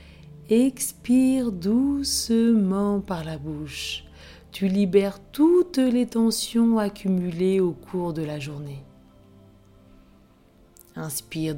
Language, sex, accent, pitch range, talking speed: French, female, French, 150-225 Hz, 90 wpm